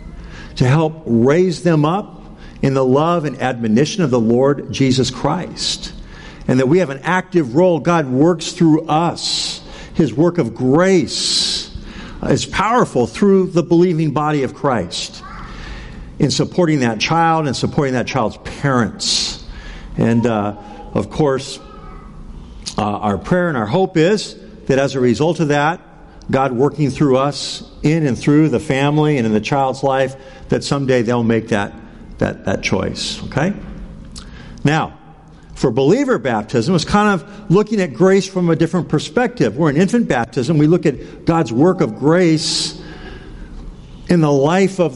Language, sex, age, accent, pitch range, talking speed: English, male, 50-69, American, 130-170 Hz, 155 wpm